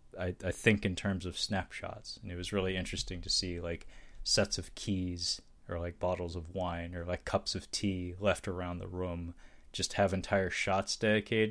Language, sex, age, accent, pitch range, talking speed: English, male, 20-39, American, 90-105 Hz, 195 wpm